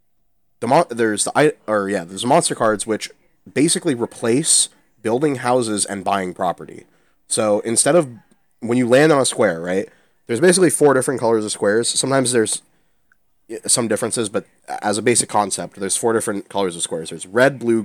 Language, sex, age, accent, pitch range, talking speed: English, male, 30-49, American, 100-120 Hz, 180 wpm